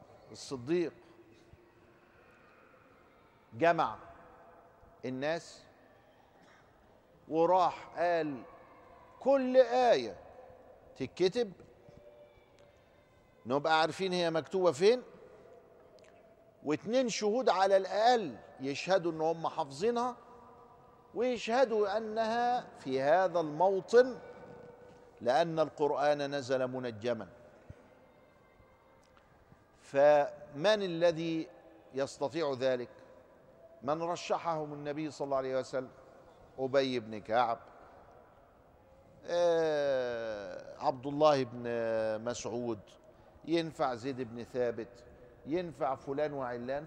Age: 50-69